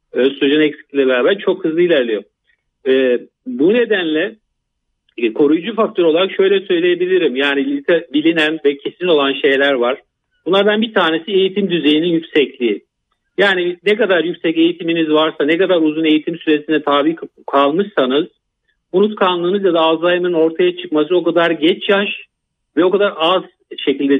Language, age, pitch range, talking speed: Turkish, 50-69, 145-190 Hz, 140 wpm